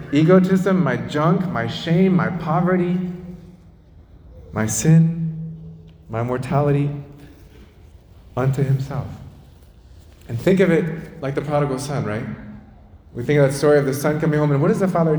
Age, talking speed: 30-49, 145 wpm